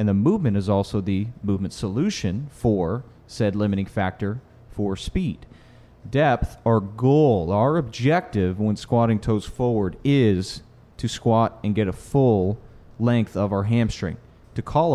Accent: American